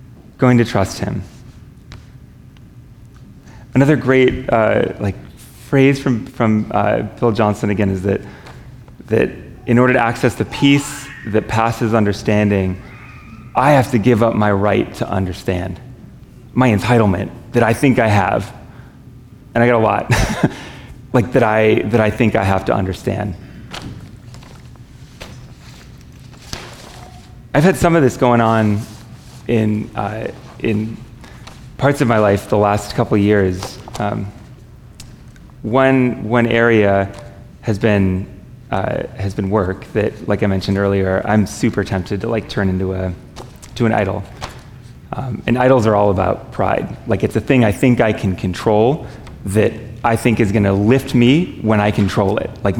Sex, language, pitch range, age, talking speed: male, English, 105-125 Hz, 30-49, 150 wpm